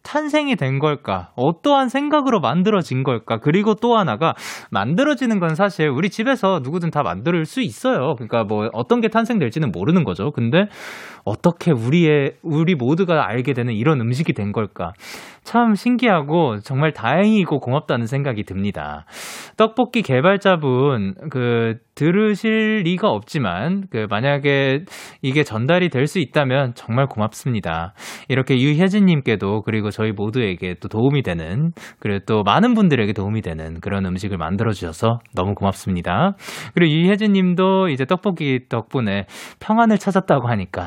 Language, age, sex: Korean, 20-39, male